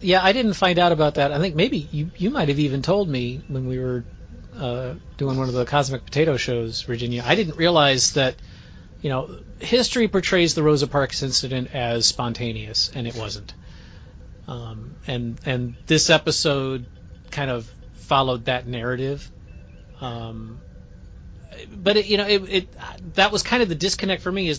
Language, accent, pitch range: English, American, 115-155 Hz